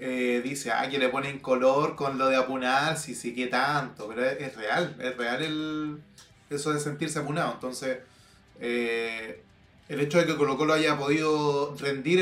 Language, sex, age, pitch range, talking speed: Spanish, male, 20-39, 130-165 Hz, 180 wpm